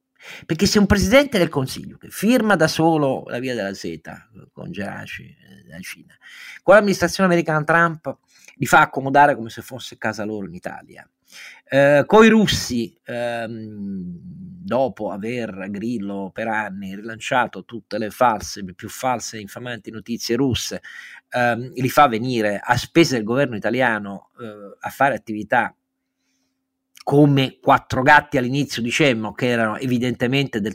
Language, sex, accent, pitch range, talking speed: Italian, male, native, 115-180 Hz, 150 wpm